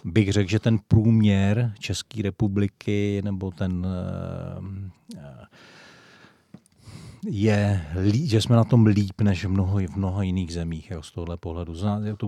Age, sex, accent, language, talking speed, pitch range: 40-59, male, native, Czech, 125 wpm, 90-100 Hz